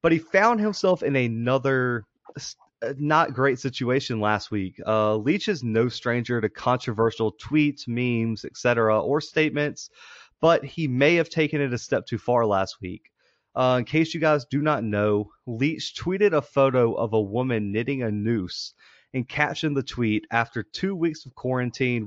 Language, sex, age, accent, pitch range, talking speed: English, male, 30-49, American, 115-145 Hz, 170 wpm